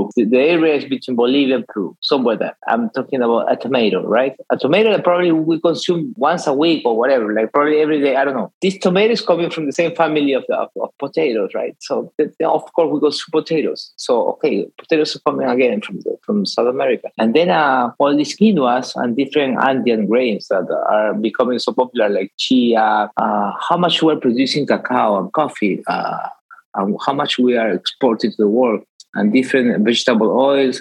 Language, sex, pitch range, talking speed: English, male, 115-155 Hz, 205 wpm